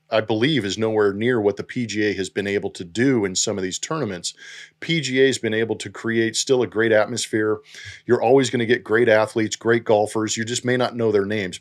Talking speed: 230 wpm